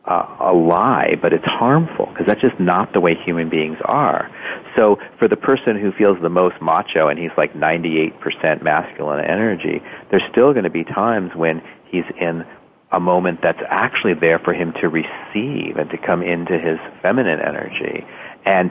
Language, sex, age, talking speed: English, male, 40-59, 180 wpm